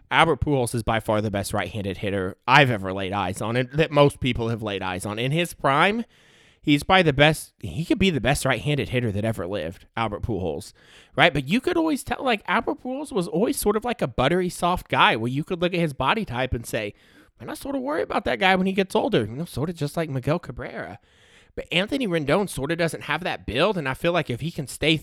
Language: English